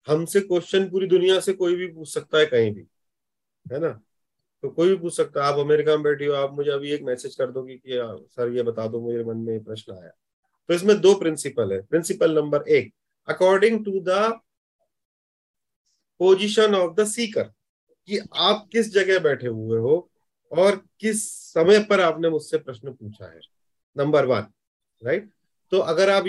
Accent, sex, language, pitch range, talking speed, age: native, male, Hindi, 135-200 Hz, 185 wpm, 30-49